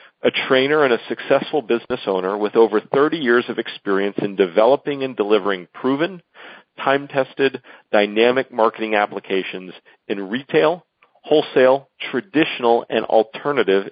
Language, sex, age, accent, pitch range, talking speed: English, male, 40-59, American, 105-140 Hz, 120 wpm